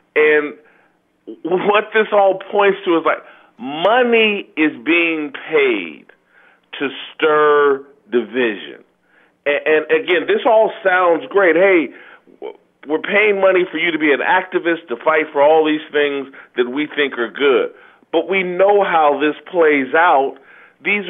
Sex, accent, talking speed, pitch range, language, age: male, American, 140 wpm, 155-205 Hz, English, 40-59